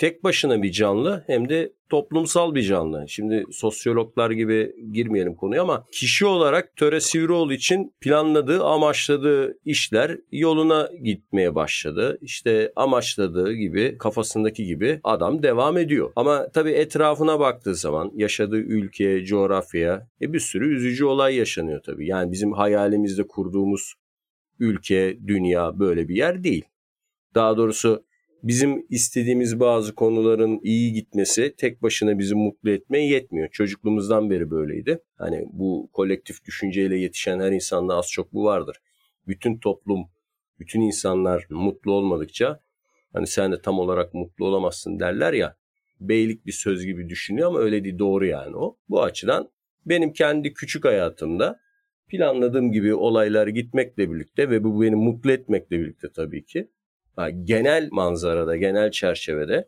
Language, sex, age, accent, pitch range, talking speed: Turkish, male, 50-69, native, 100-145 Hz, 135 wpm